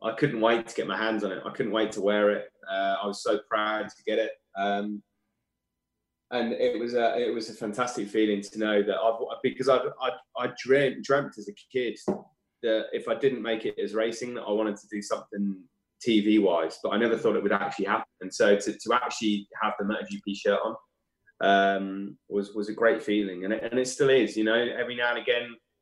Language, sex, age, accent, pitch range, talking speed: English, male, 20-39, British, 105-120 Hz, 230 wpm